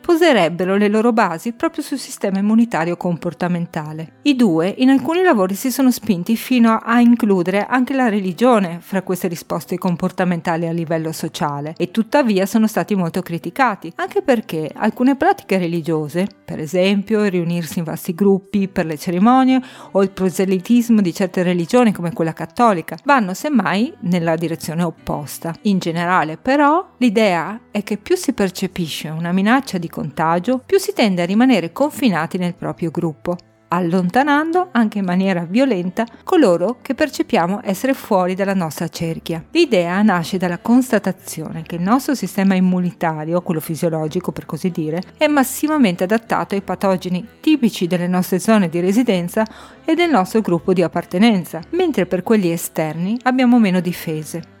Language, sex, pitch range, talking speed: Italian, female, 175-240 Hz, 150 wpm